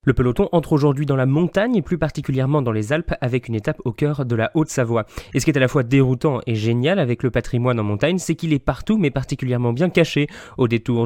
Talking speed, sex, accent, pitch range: 250 wpm, male, French, 120-160 Hz